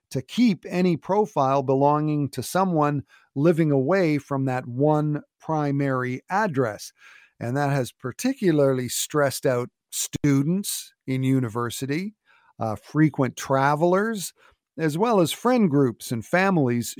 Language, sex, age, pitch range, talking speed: English, male, 50-69, 130-170 Hz, 115 wpm